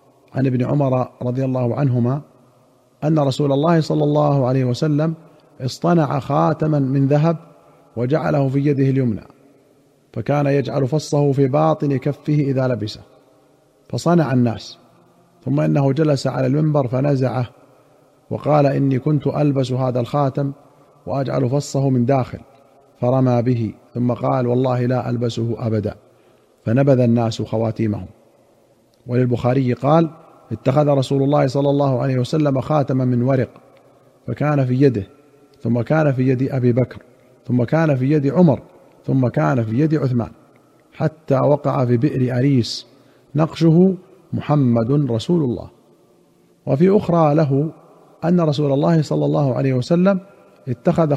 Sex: male